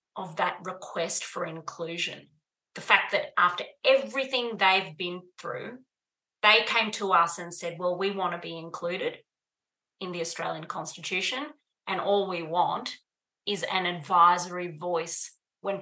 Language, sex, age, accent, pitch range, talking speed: English, female, 30-49, Australian, 175-205 Hz, 145 wpm